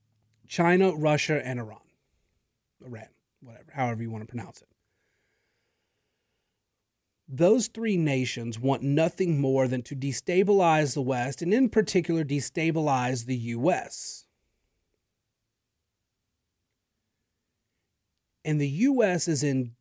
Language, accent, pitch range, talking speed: English, American, 125-175 Hz, 105 wpm